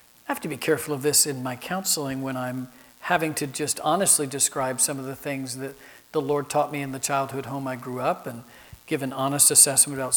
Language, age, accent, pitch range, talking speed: English, 50-69, American, 130-155 Hz, 225 wpm